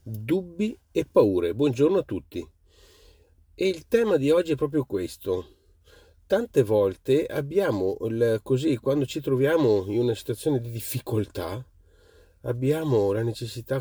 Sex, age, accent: male, 40-59, native